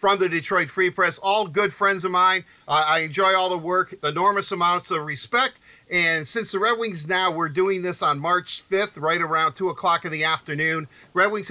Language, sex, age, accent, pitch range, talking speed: English, male, 50-69, American, 140-175 Hz, 215 wpm